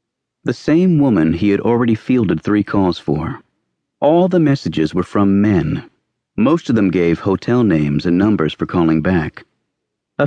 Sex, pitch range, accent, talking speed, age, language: male, 85-130 Hz, American, 165 wpm, 50-69, English